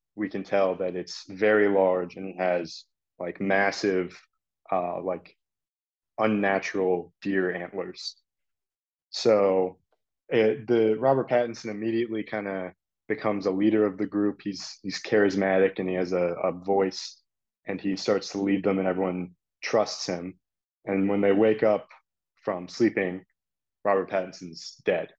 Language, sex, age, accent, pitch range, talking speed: English, male, 20-39, American, 95-110 Hz, 140 wpm